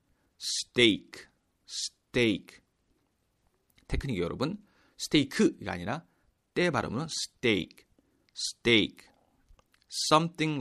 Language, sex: Korean, male